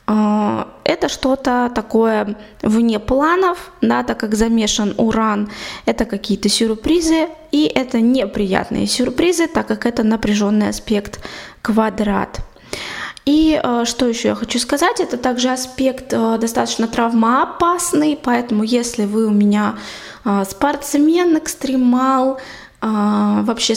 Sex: female